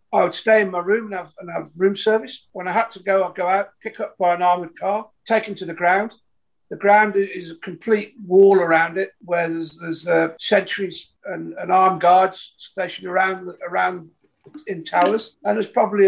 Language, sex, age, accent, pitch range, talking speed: English, male, 50-69, British, 180-210 Hz, 210 wpm